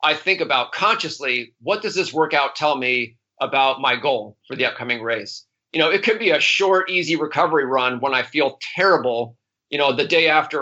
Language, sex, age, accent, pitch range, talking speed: English, male, 30-49, American, 125-160 Hz, 205 wpm